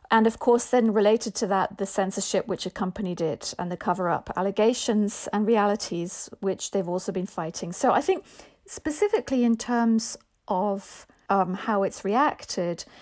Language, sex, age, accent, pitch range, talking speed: English, female, 40-59, British, 195-230 Hz, 160 wpm